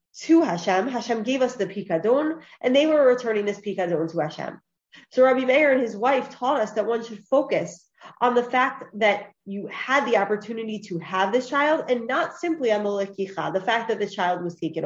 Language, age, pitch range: English, 20-39, 205-270 Hz